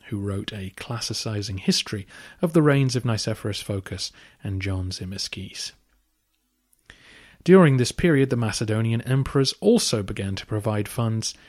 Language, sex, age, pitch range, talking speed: English, male, 30-49, 105-135 Hz, 130 wpm